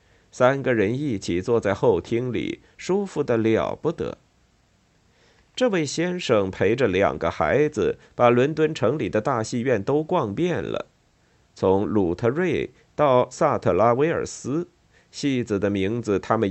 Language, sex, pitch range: Chinese, male, 100-155 Hz